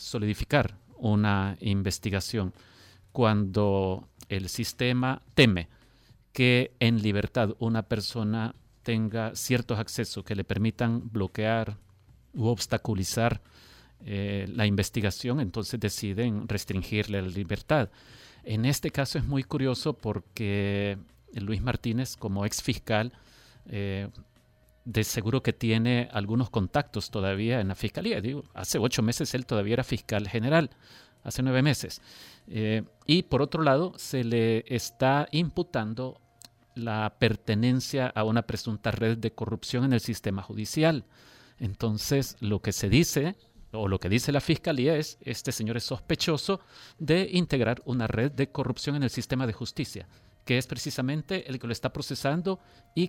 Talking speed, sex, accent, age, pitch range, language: 135 wpm, male, Mexican, 40-59, 105-130 Hz, Spanish